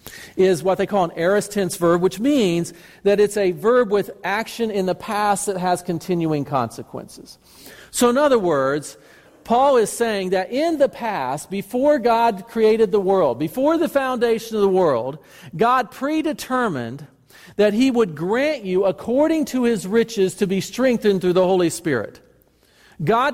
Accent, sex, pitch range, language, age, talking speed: American, male, 190-240 Hz, English, 50-69, 165 wpm